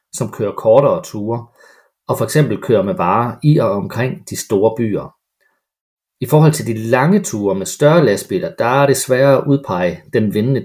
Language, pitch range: Danish, 110-150 Hz